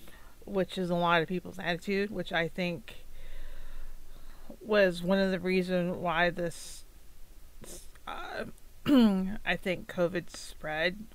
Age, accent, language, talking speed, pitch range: 30-49, American, English, 120 wpm, 165-205 Hz